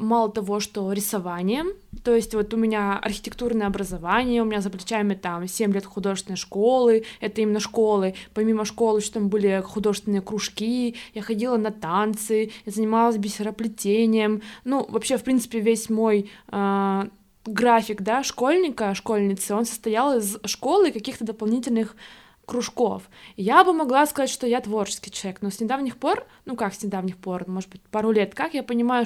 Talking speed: 160 wpm